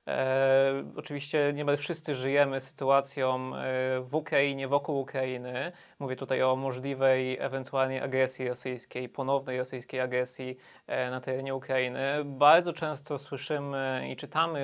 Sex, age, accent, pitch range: male, 20-39, native, 135-160 Hz